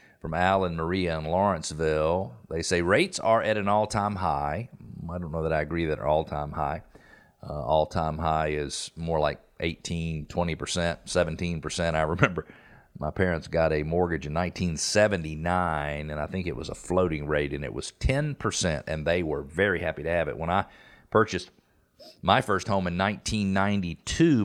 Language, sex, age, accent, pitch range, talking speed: English, male, 40-59, American, 80-100 Hz, 170 wpm